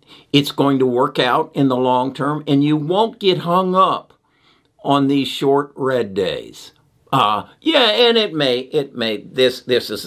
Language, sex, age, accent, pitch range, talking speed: English, male, 50-69, American, 115-150 Hz, 180 wpm